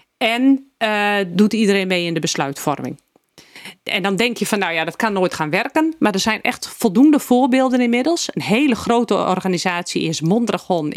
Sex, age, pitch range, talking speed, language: female, 40-59, 180-235 Hz, 180 wpm, Dutch